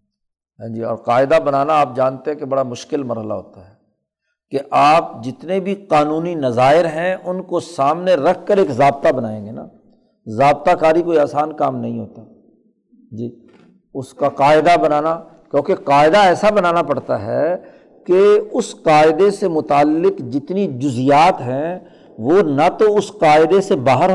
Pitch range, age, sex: 135-185 Hz, 50-69, male